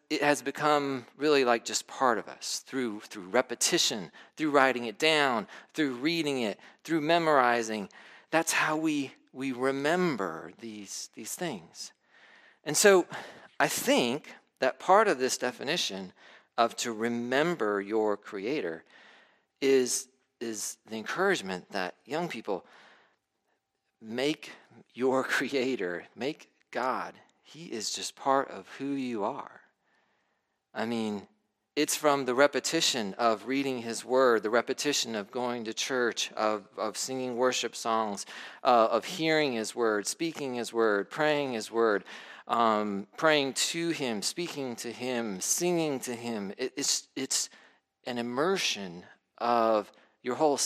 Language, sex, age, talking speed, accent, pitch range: English, male, 40-59, 135 wpm, American, 115-150 Hz